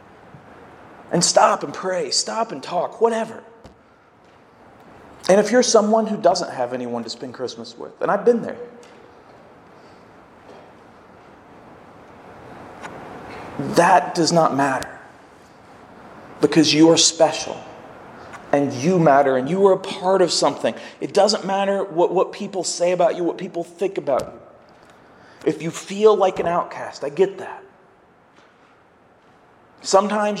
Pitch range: 160-215 Hz